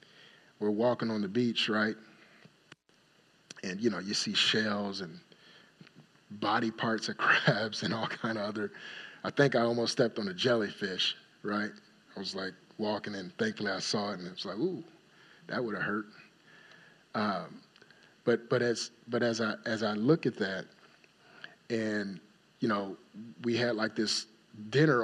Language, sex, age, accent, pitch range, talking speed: English, male, 30-49, American, 110-140 Hz, 165 wpm